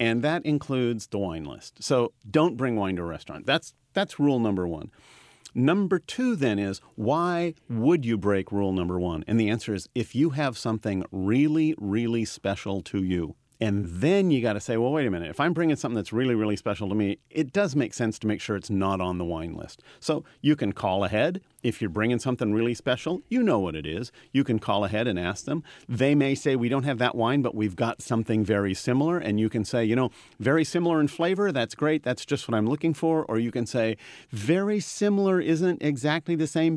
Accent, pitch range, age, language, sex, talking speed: American, 105-140 Hz, 40-59, English, male, 230 wpm